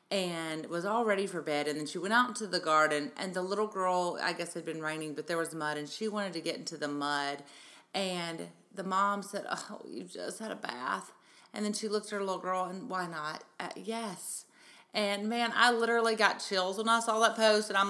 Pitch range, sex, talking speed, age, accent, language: 175-220 Hz, female, 240 wpm, 30-49, American, English